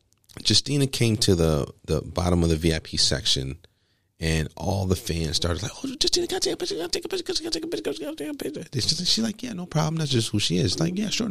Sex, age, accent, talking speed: male, 40-59, American, 290 wpm